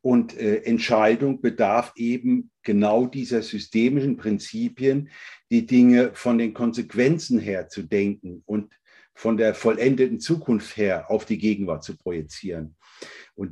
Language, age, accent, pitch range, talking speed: German, 50-69, German, 105-130 Hz, 130 wpm